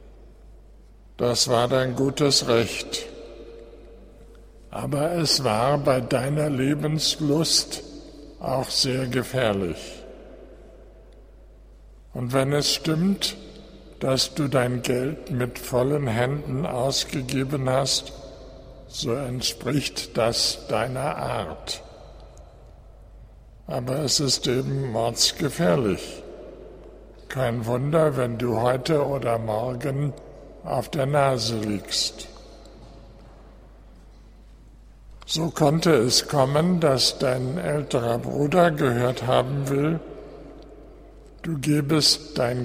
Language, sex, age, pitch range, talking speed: German, male, 60-79, 125-145 Hz, 85 wpm